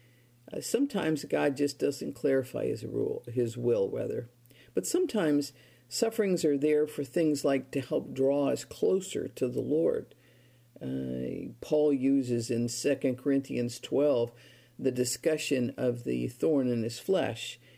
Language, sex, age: English, female, 50-69